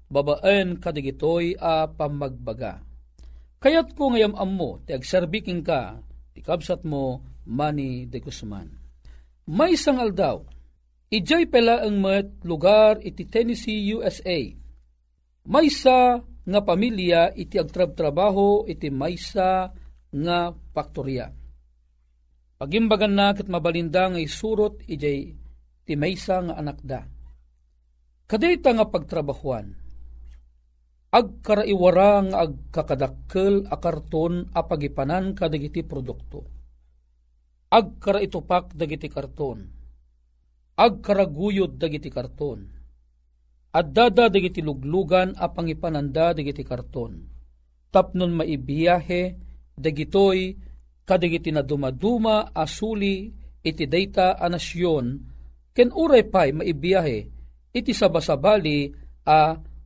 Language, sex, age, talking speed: Filipino, male, 40-59, 95 wpm